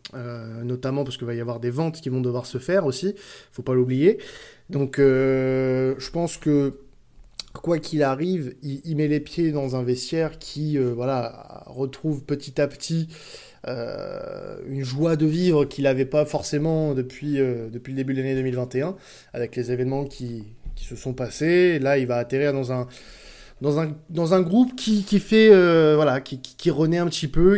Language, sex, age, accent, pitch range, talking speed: French, male, 20-39, French, 130-160 Hz, 200 wpm